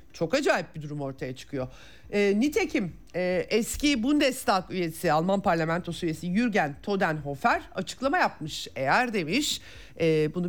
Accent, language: native, Turkish